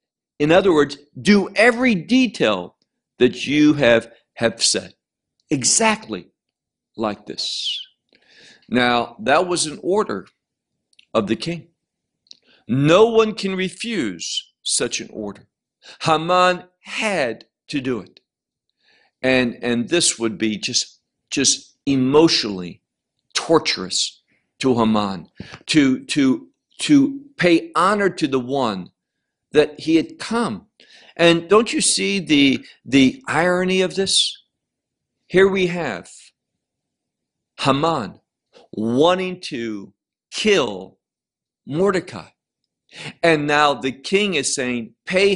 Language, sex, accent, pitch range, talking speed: English, male, American, 125-195 Hz, 105 wpm